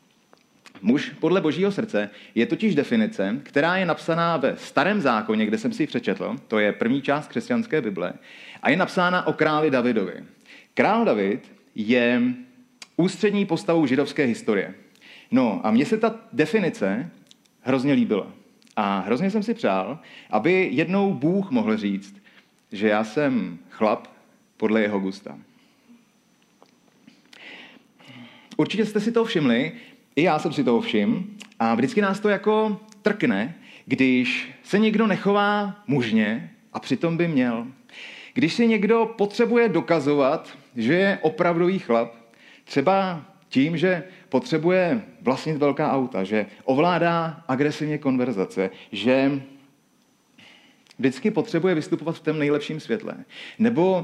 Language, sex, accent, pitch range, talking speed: Czech, male, native, 135-225 Hz, 130 wpm